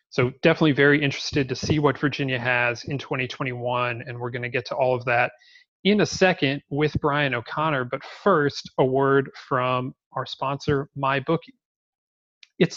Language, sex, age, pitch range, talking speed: English, male, 30-49, 130-160 Hz, 165 wpm